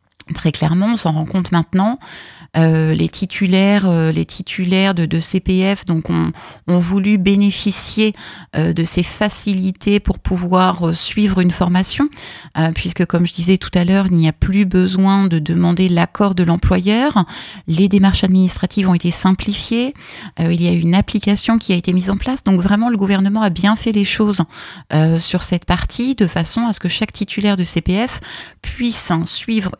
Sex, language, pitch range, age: female, French, 170-205 Hz, 30-49